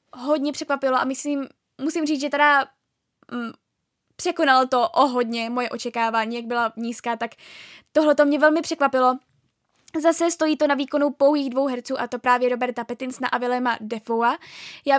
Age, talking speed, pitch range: 10-29, 165 wpm, 245-290 Hz